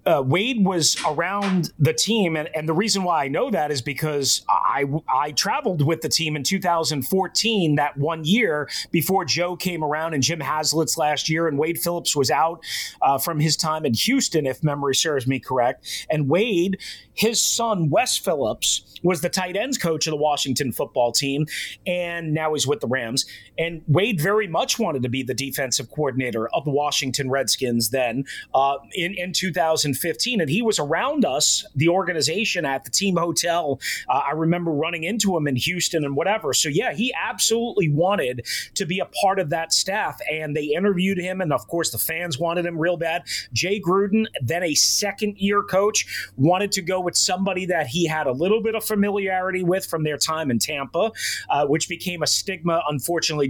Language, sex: English, male